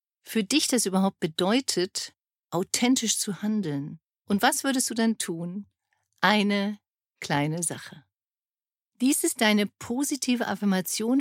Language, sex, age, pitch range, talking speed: German, female, 50-69, 175-235 Hz, 120 wpm